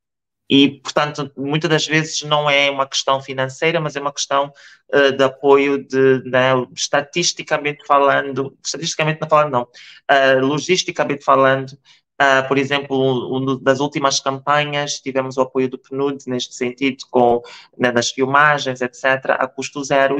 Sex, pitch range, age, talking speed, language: male, 135-150 Hz, 20-39, 150 wpm, Portuguese